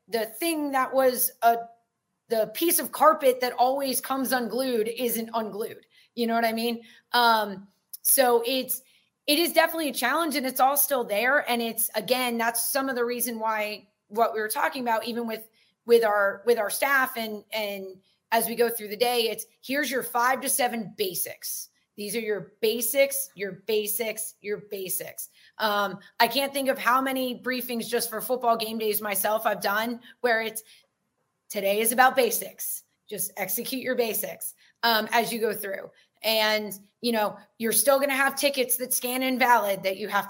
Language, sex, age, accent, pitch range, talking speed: English, female, 30-49, American, 210-260 Hz, 185 wpm